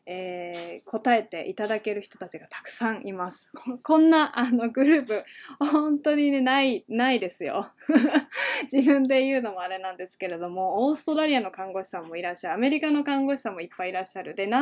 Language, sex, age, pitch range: Japanese, female, 20-39, 190-255 Hz